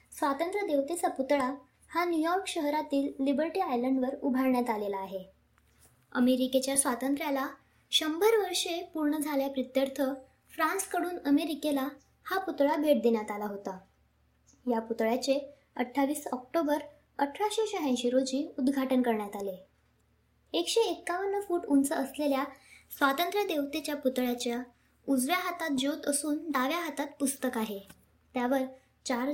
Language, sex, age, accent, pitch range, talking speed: Marathi, male, 20-39, native, 255-320 Hz, 95 wpm